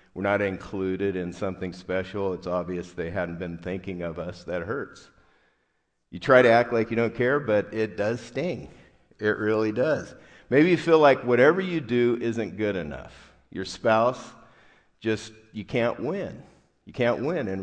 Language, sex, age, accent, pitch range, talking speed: English, male, 50-69, American, 95-120 Hz, 175 wpm